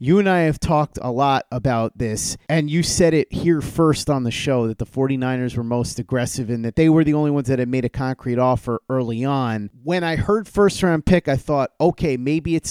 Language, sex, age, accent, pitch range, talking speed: English, male, 30-49, American, 125-155 Hz, 235 wpm